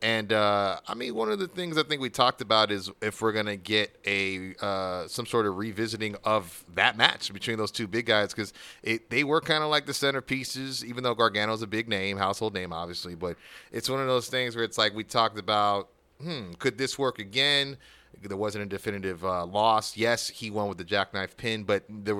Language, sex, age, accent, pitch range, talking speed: English, male, 30-49, American, 100-125 Hz, 220 wpm